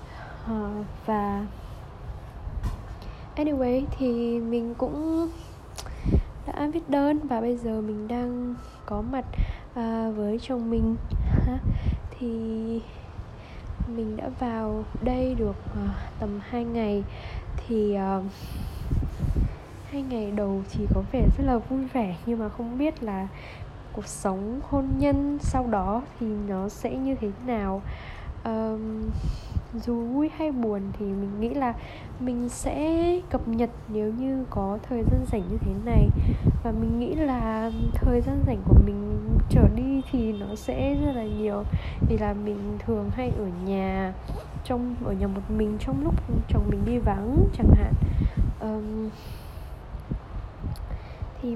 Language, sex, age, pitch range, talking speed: Vietnamese, female, 10-29, 185-245 Hz, 140 wpm